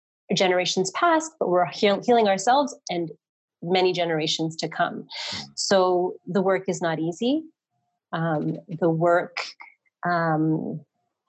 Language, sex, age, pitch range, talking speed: English, female, 30-49, 165-215 Hz, 110 wpm